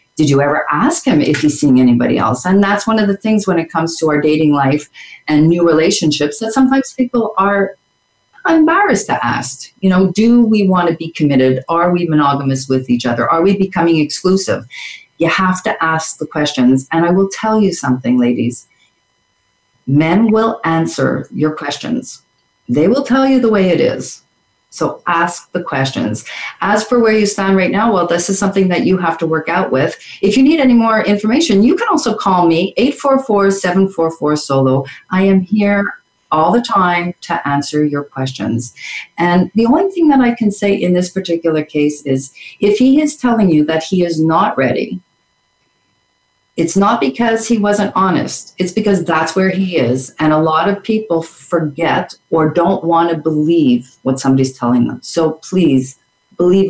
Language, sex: English, female